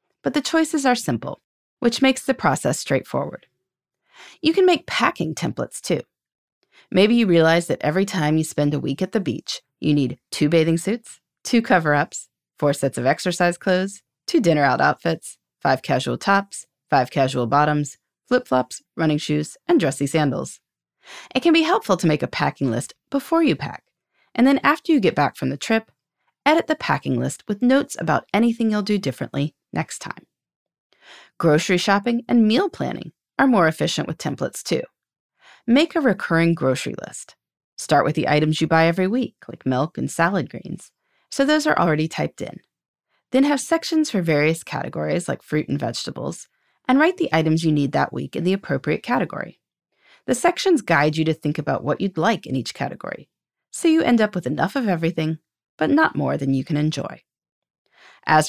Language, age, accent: English, 30-49, American